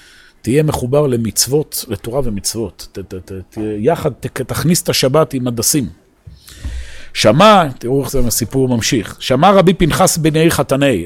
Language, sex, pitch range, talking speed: Hebrew, male, 125-180 Hz, 145 wpm